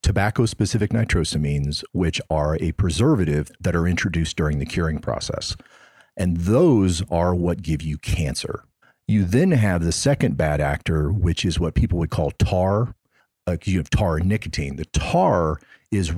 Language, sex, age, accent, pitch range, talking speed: English, male, 40-59, American, 80-110 Hz, 160 wpm